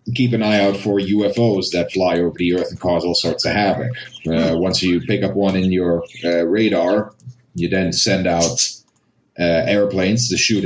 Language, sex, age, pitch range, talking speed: English, male, 30-49, 90-105 Hz, 195 wpm